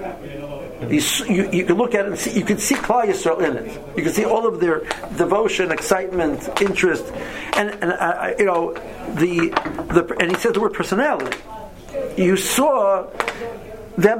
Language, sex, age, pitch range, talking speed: English, male, 50-69, 145-215 Hz, 175 wpm